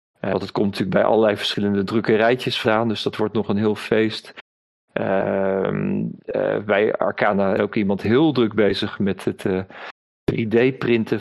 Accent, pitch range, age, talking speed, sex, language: Dutch, 100-115 Hz, 40-59, 155 wpm, male, Dutch